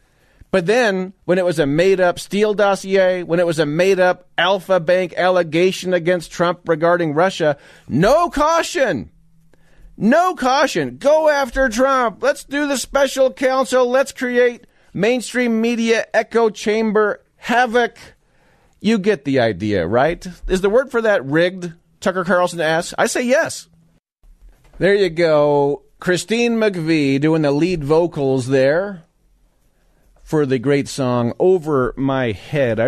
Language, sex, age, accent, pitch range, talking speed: English, male, 40-59, American, 130-195 Hz, 140 wpm